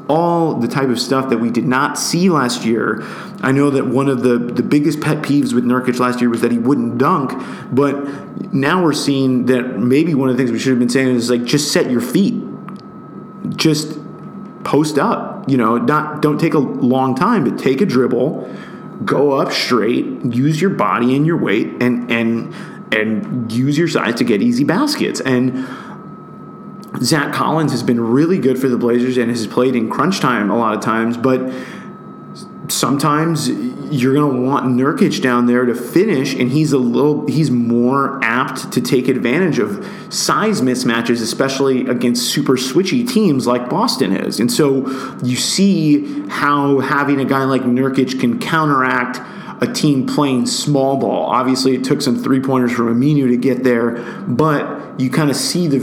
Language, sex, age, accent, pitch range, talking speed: English, male, 30-49, American, 125-145 Hz, 185 wpm